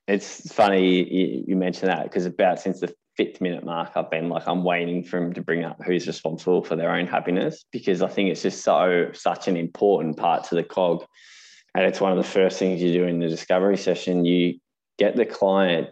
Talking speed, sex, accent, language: 220 wpm, male, Australian, English